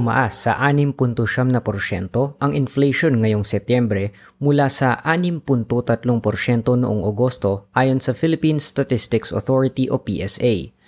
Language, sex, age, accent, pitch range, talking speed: Filipino, female, 20-39, native, 110-140 Hz, 120 wpm